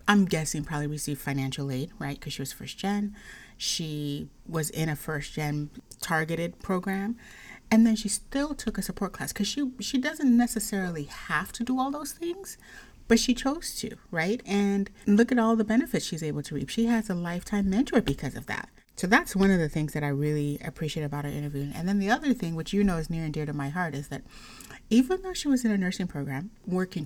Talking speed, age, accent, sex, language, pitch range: 220 wpm, 30-49, American, female, English, 155-220 Hz